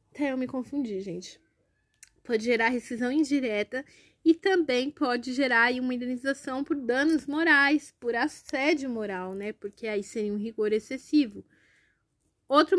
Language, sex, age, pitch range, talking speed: Portuguese, female, 20-39, 230-290 Hz, 140 wpm